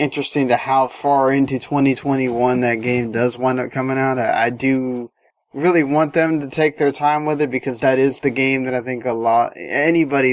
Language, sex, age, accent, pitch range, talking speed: English, male, 10-29, American, 120-140 Hz, 210 wpm